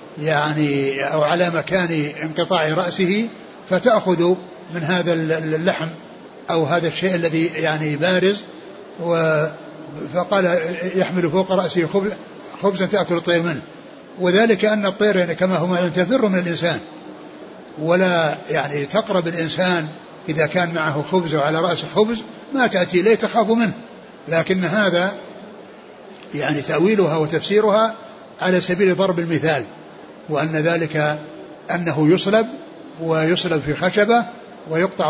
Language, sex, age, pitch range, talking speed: Arabic, male, 60-79, 160-195 Hz, 110 wpm